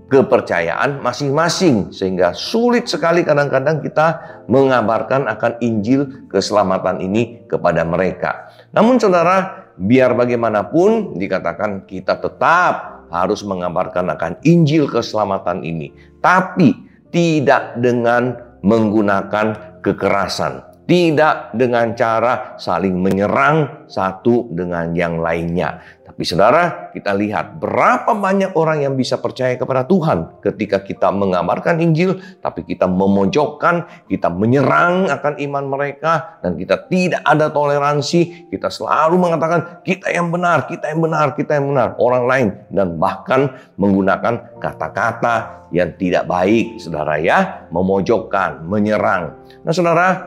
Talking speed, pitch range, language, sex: 115 wpm, 95-155 Hz, Indonesian, male